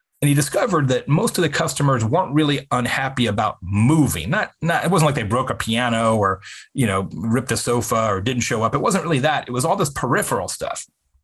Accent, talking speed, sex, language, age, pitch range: American, 225 wpm, male, English, 30-49, 120-175 Hz